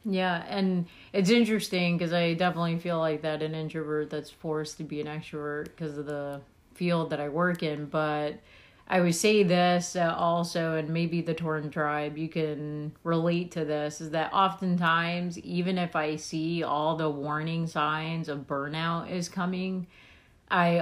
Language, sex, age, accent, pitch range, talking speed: English, female, 30-49, American, 150-175 Hz, 165 wpm